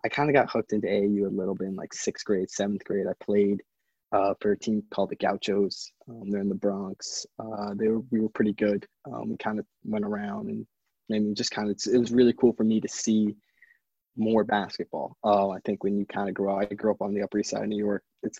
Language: English